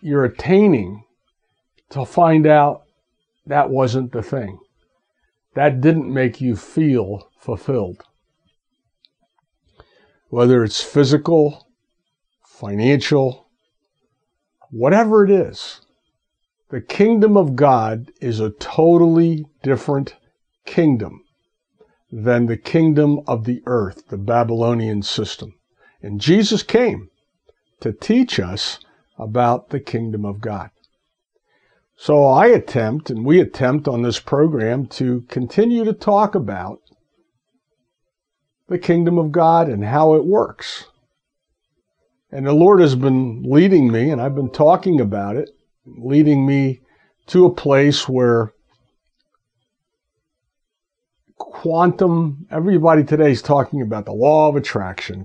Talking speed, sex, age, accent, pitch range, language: 110 wpm, male, 60-79, American, 120-165 Hz, English